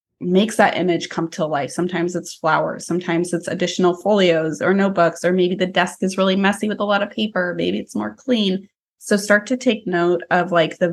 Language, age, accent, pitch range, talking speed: English, 20-39, American, 170-200 Hz, 215 wpm